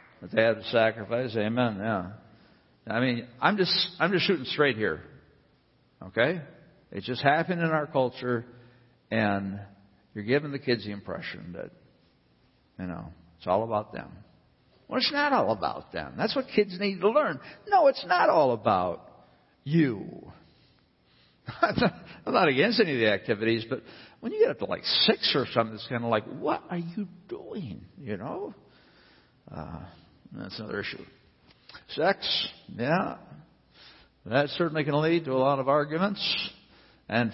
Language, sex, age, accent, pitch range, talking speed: English, male, 60-79, American, 110-170 Hz, 155 wpm